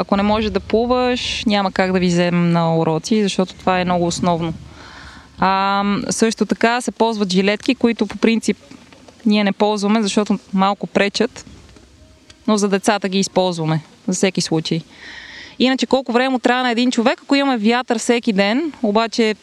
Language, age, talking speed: Bulgarian, 20-39, 165 wpm